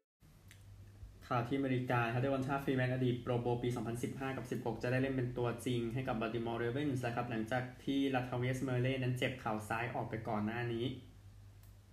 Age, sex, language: 20-39, male, Thai